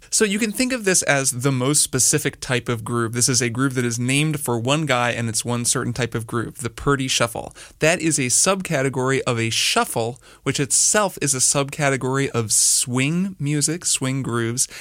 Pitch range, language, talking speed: 120-145 Hz, English, 205 wpm